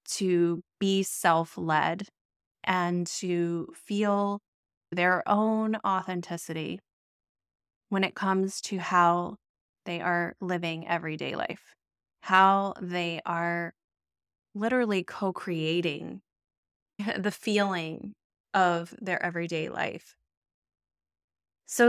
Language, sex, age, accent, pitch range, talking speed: English, female, 20-39, American, 165-200 Hz, 85 wpm